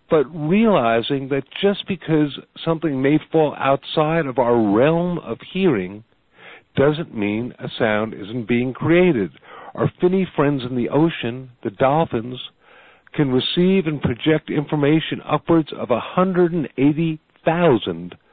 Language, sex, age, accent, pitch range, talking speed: English, male, 50-69, American, 120-155 Hz, 120 wpm